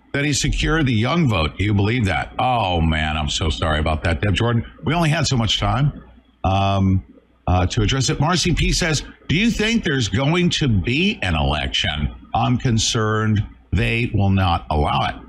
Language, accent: English, American